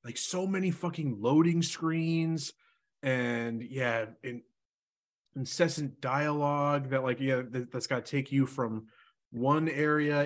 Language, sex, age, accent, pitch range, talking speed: English, male, 30-49, American, 110-140 Hz, 135 wpm